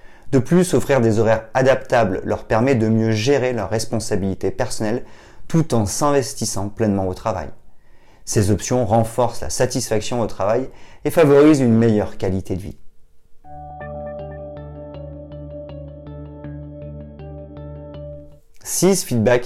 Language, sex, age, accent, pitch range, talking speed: French, male, 30-49, French, 90-120 Hz, 110 wpm